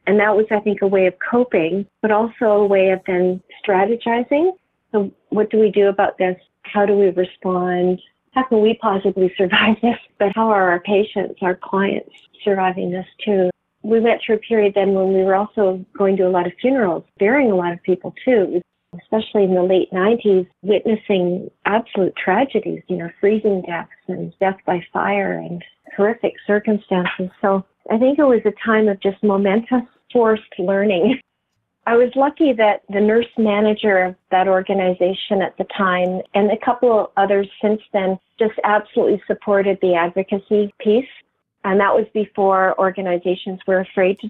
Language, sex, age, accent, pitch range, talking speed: English, female, 40-59, American, 190-215 Hz, 175 wpm